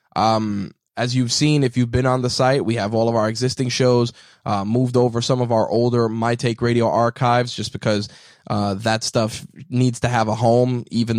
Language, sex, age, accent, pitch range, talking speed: English, male, 20-39, American, 110-130 Hz, 210 wpm